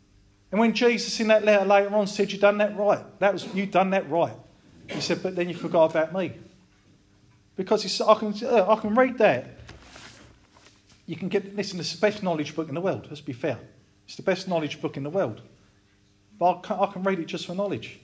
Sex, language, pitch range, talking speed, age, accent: male, English, 135-210 Hz, 225 wpm, 40-59, British